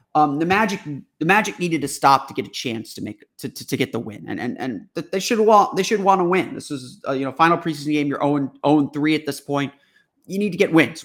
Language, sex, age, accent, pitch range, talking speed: English, male, 30-49, American, 145-175 Hz, 270 wpm